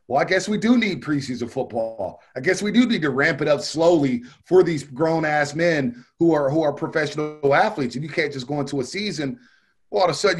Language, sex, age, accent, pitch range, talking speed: English, male, 30-49, American, 135-175 Hz, 235 wpm